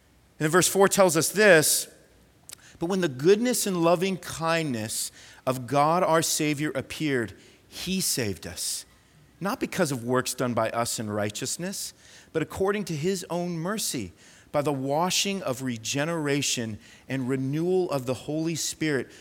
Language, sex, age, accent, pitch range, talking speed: English, male, 40-59, American, 125-185 Hz, 150 wpm